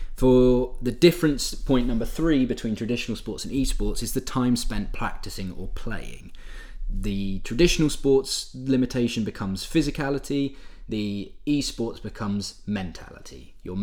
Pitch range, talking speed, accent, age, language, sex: 95-130 Hz, 125 wpm, British, 20-39, English, male